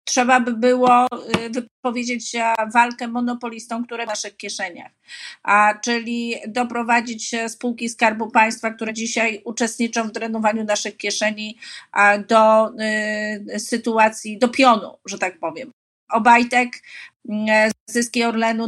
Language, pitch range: Polish, 220-245 Hz